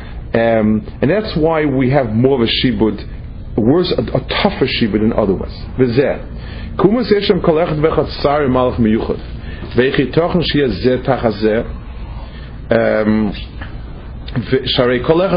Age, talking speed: 40-59, 45 wpm